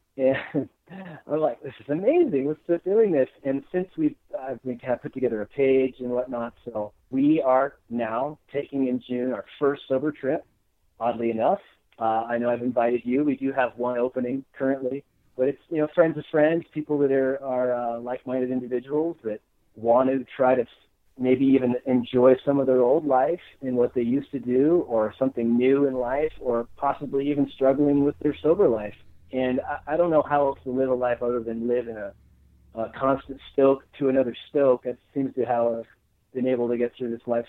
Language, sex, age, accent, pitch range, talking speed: English, male, 40-59, American, 120-140 Hz, 205 wpm